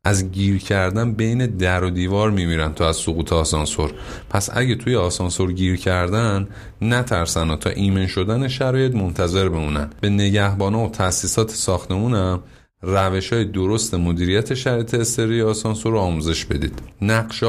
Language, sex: Persian, male